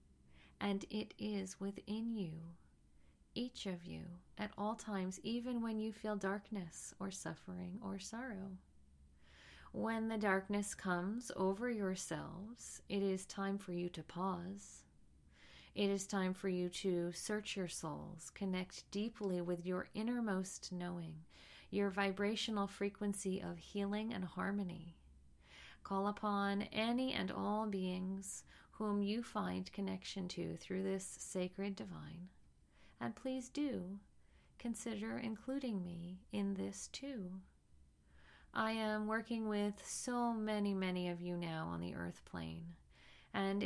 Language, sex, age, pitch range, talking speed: English, female, 40-59, 165-210 Hz, 130 wpm